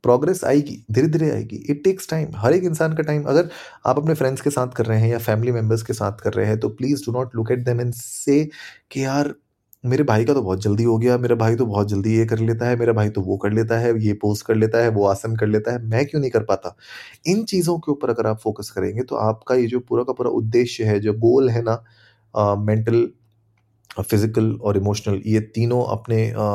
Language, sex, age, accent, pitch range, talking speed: Hindi, male, 30-49, native, 110-125 Hz, 245 wpm